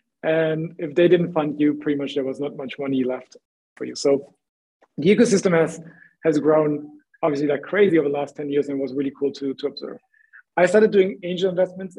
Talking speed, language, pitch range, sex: 210 wpm, English, 150-180 Hz, male